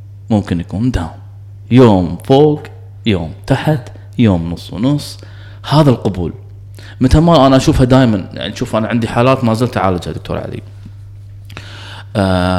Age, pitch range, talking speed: 20-39, 100-125 Hz, 130 wpm